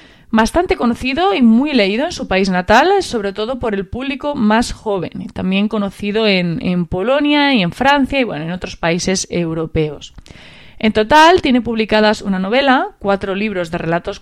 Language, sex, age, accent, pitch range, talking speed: Spanish, female, 30-49, Spanish, 190-250 Hz, 170 wpm